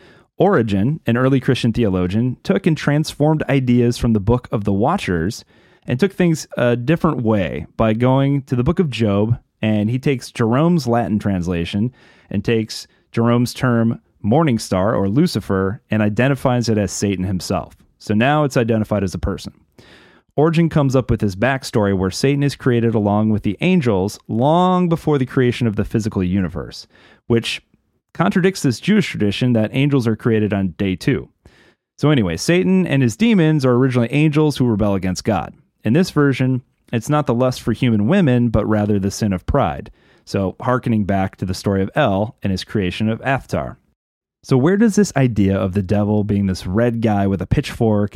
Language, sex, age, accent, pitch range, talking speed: English, male, 30-49, American, 100-135 Hz, 180 wpm